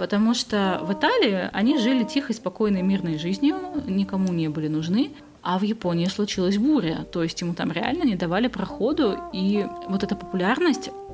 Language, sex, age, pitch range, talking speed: Russian, female, 20-39, 175-235 Hz, 165 wpm